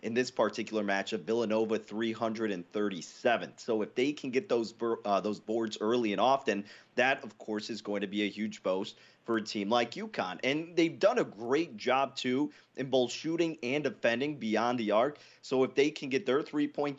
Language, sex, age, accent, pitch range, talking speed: English, male, 30-49, American, 115-140 Hz, 195 wpm